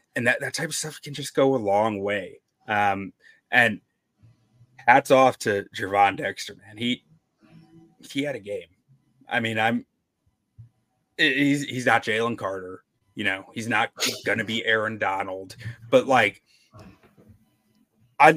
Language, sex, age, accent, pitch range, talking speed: English, male, 30-49, American, 105-135 Hz, 145 wpm